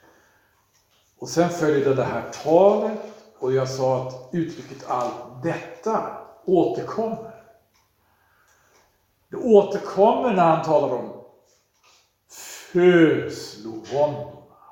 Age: 60-79